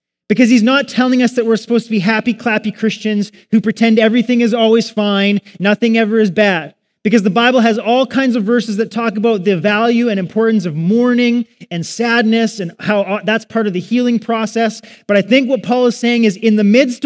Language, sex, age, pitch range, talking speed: English, male, 30-49, 185-240 Hz, 215 wpm